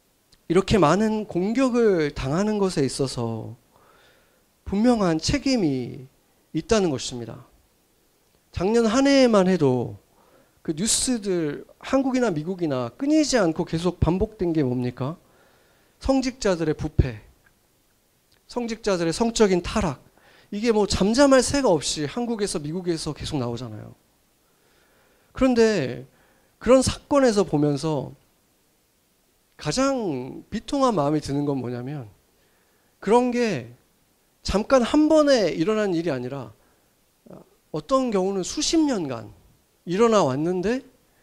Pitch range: 135-230 Hz